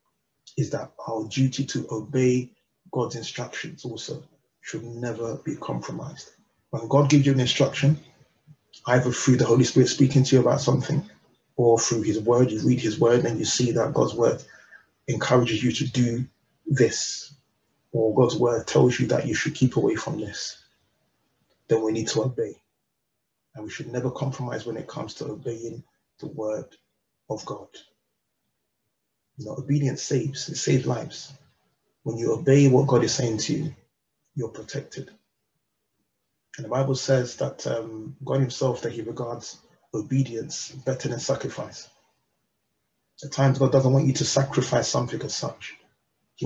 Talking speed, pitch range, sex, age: 160 wpm, 115-140 Hz, male, 30-49